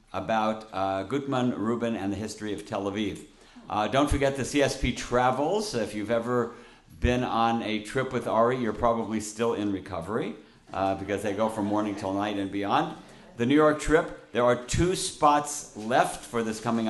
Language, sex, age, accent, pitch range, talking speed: English, male, 60-79, American, 100-120 Hz, 185 wpm